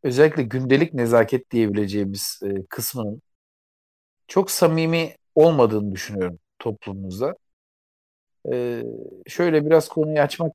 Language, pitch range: Turkish, 105-150 Hz